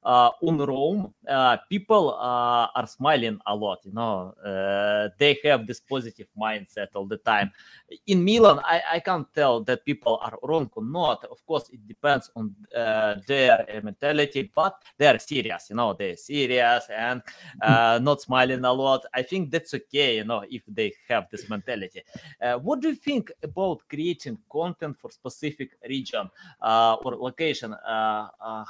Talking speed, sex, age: 170 wpm, male, 30-49